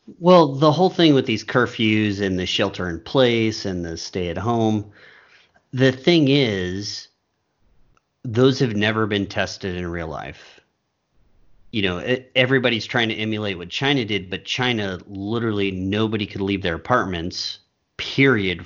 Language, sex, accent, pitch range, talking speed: English, male, American, 90-110 Hz, 150 wpm